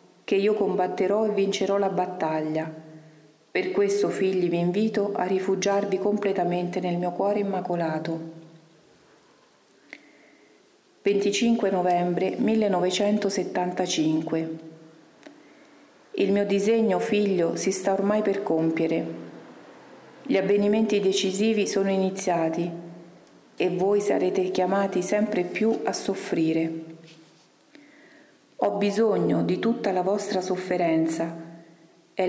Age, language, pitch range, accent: 40-59, Italian, 170-205 Hz, native